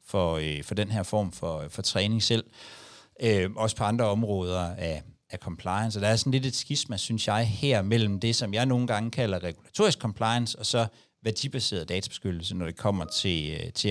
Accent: native